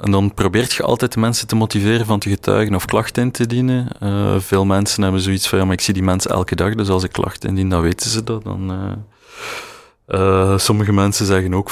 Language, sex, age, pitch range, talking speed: Dutch, male, 30-49, 95-110 Hz, 235 wpm